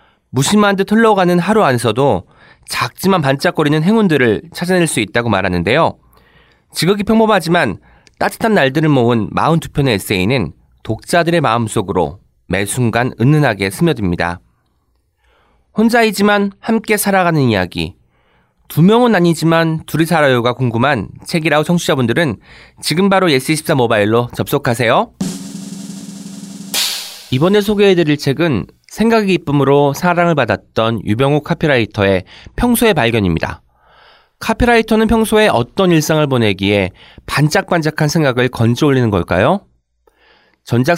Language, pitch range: Korean, 115-190 Hz